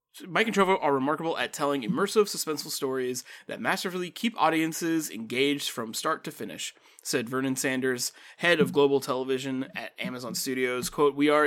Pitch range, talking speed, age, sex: 140-190 Hz, 165 wpm, 20-39, male